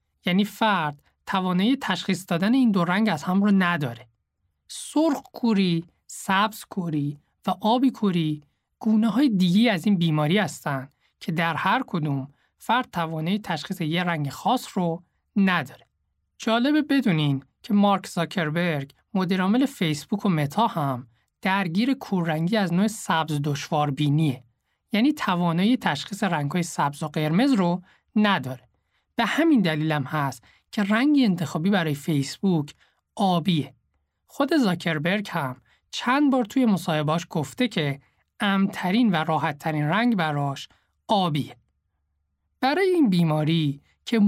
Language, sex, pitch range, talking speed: Persian, male, 145-210 Hz, 125 wpm